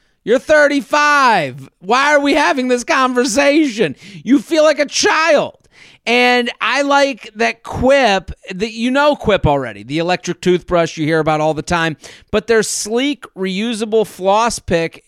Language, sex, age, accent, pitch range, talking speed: English, male, 40-59, American, 175-230 Hz, 150 wpm